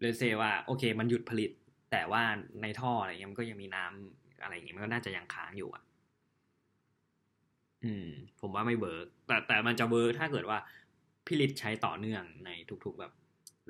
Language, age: Thai, 20-39